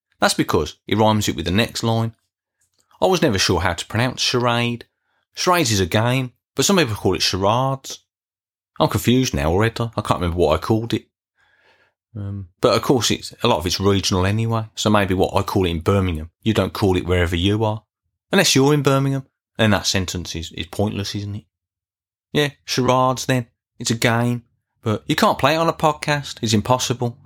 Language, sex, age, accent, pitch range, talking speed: English, male, 30-49, British, 95-115 Hz, 205 wpm